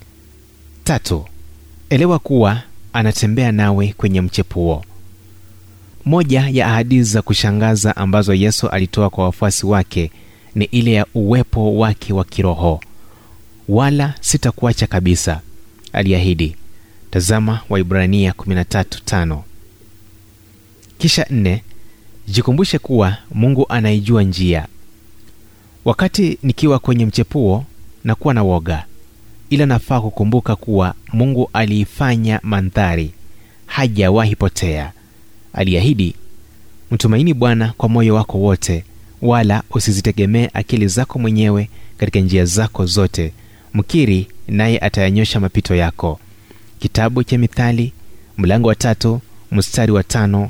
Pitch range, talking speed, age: 95-115 Hz, 100 wpm, 30-49